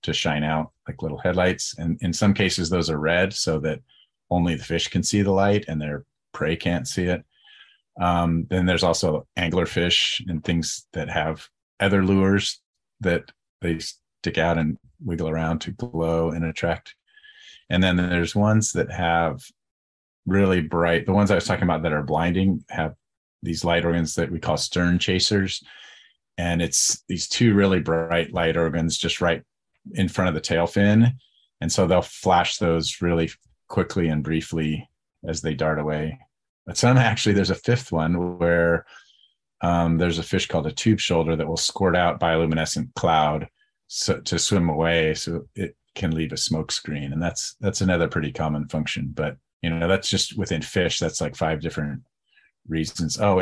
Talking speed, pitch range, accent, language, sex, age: 180 wpm, 80-95 Hz, American, English, male, 40-59